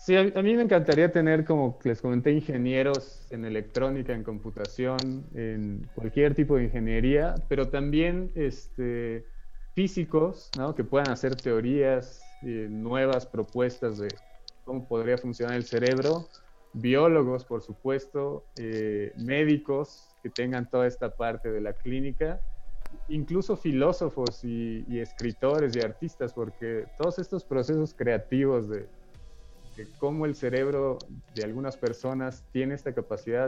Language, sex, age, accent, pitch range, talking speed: Spanish, male, 20-39, Mexican, 115-150 Hz, 125 wpm